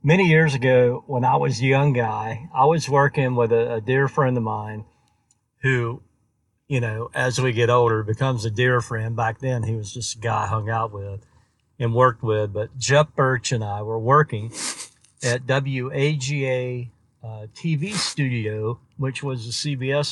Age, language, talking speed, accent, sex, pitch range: 50-69, English, 180 wpm, American, male, 120-140 Hz